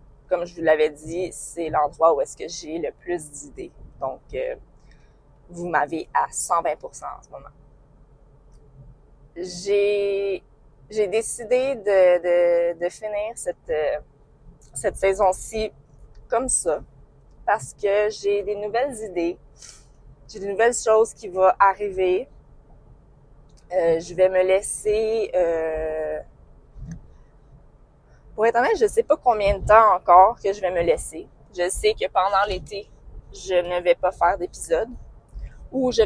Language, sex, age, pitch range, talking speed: French, female, 20-39, 165-215 Hz, 135 wpm